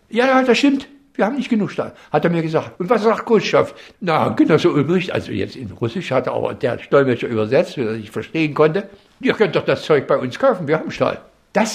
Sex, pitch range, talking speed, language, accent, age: male, 140-195 Hz, 240 wpm, German, German, 60-79